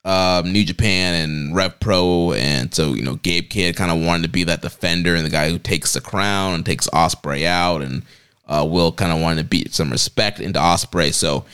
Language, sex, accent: English, male, American